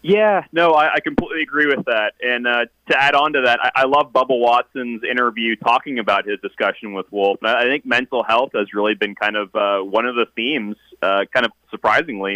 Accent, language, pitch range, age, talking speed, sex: American, English, 105-120 Hz, 30-49, 225 wpm, male